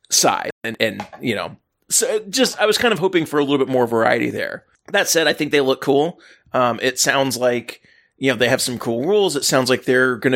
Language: English